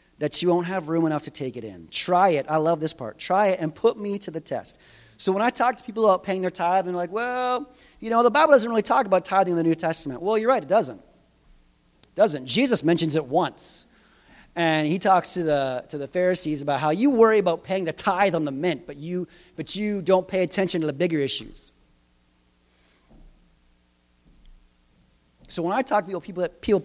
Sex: male